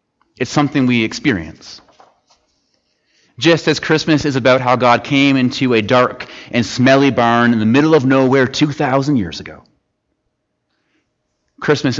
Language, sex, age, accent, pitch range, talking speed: English, male, 30-49, American, 110-135 Hz, 135 wpm